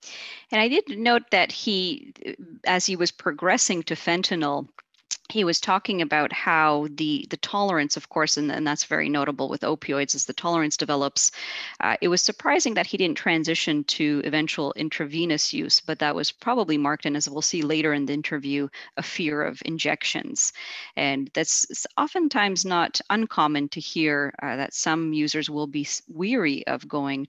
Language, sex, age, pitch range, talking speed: English, female, 40-59, 145-170 Hz, 170 wpm